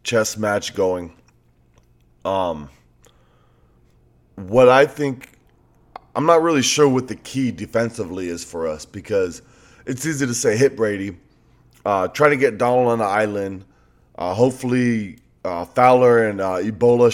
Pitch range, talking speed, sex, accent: 100-130 Hz, 140 wpm, male, American